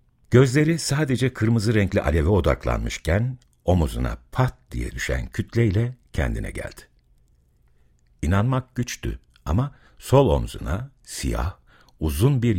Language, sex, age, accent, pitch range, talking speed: Turkish, male, 60-79, native, 70-110 Hz, 100 wpm